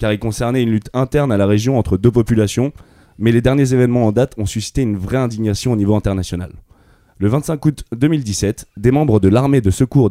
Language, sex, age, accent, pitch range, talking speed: French, male, 20-39, French, 100-130 Hz, 215 wpm